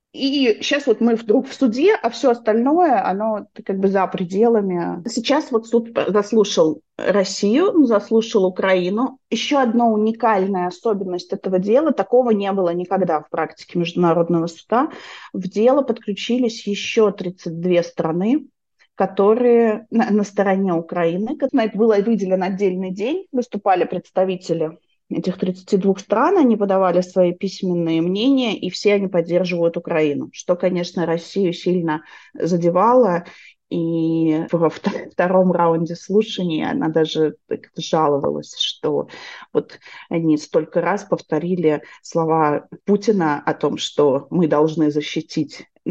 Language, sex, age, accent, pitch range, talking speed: Russian, female, 30-49, native, 165-220 Hz, 125 wpm